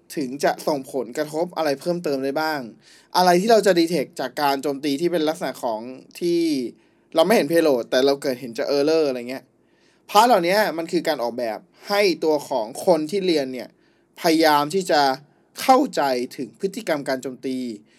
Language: Thai